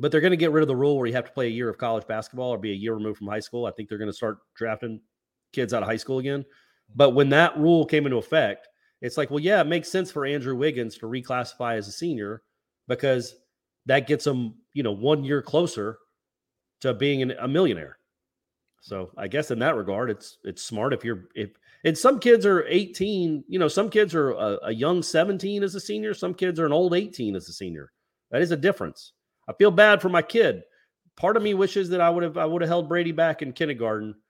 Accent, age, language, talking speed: American, 30-49, English, 245 wpm